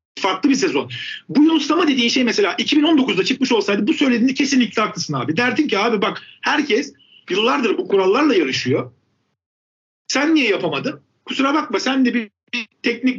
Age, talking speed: 50-69, 160 wpm